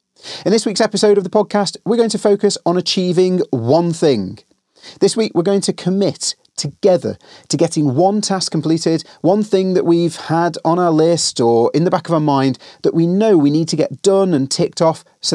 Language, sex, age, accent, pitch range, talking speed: English, male, 30-49, British, 140-190 Hz, 210 wpm